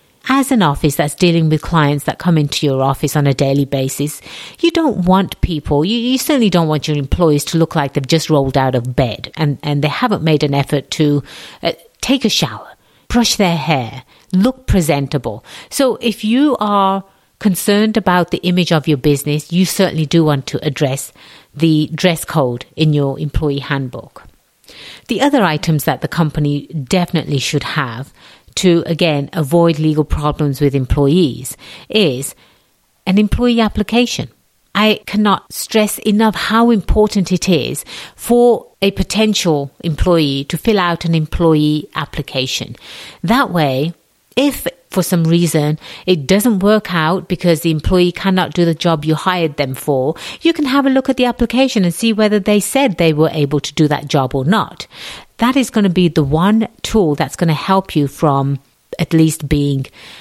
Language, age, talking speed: English, 50-69, 175 wpm